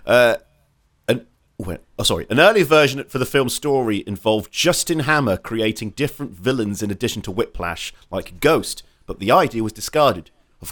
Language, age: English, 40-59